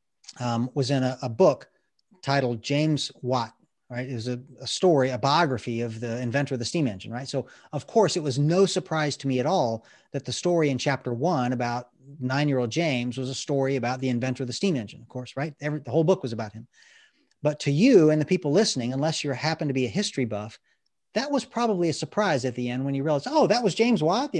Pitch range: 130-185 Hz